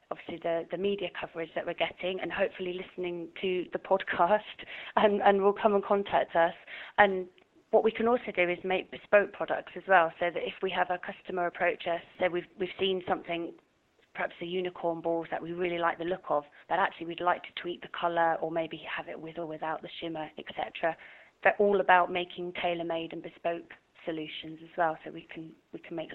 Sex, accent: female, British